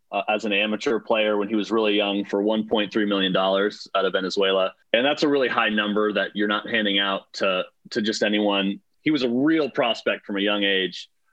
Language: English